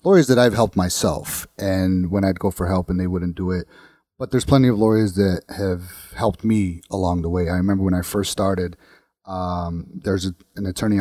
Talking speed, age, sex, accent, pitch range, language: 215 wpm, 30-49, male, American, 90-110 Hz, English